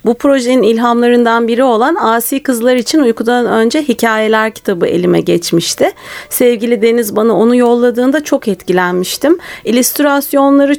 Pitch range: 205-275 Hz